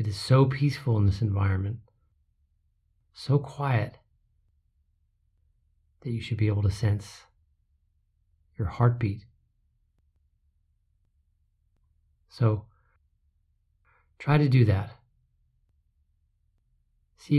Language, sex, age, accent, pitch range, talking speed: English, male, 40-59, American, 75-115 Hz, 85 wpm